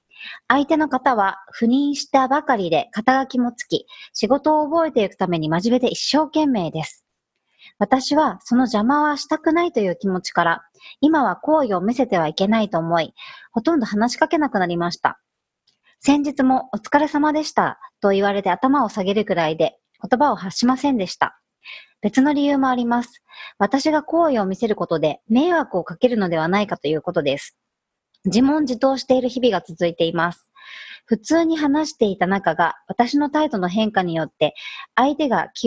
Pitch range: 185-285 Hz